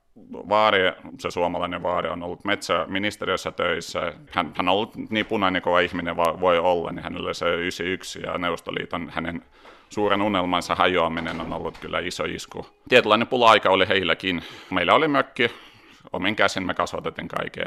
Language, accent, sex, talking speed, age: Finnish, native, male, 155 wpm, 30-49